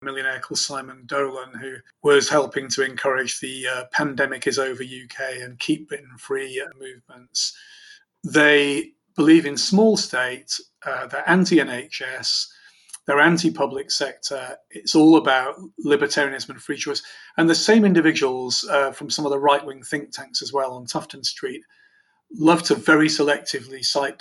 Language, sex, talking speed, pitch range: English, male, 150 wpm, 135-200 Hz